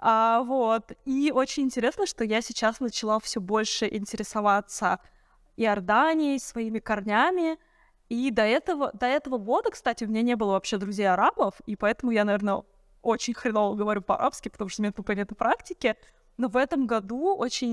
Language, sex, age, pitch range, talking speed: Russian, female, 20-39, 205-255 Hz, 155 wpm